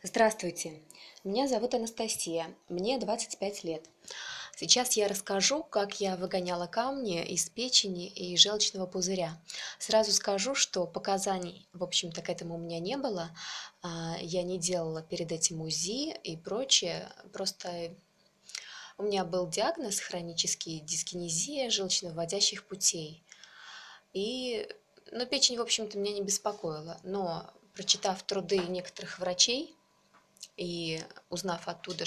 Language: Russian